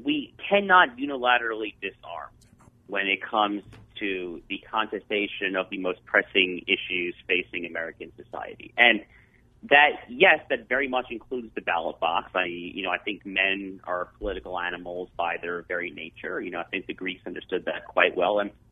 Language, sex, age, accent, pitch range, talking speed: English, male, 40-59, American, 100-125 Hz, 165 wpm